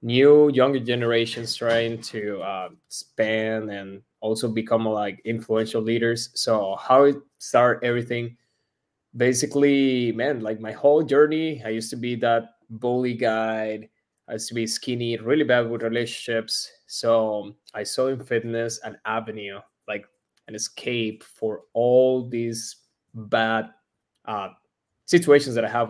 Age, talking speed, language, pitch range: 20-39, 135 wpm, English, 110-125 Hz